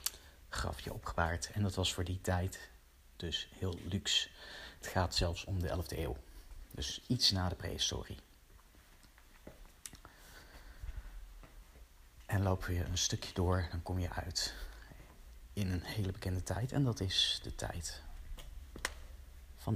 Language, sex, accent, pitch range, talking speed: Dutch, male, Dutch, 80-95 Hz, 135 wpm